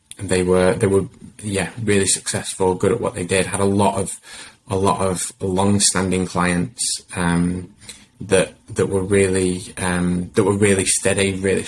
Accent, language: British, English